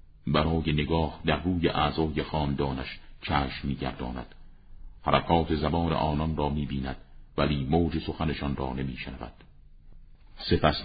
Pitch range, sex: 70-80 Hz, male